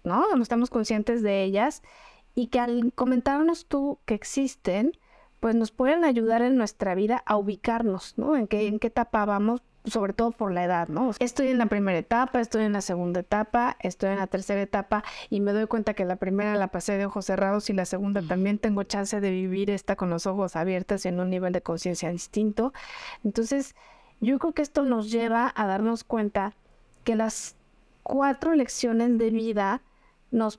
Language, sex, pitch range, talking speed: Spanish, female, 200-240 Hz, 190 wpm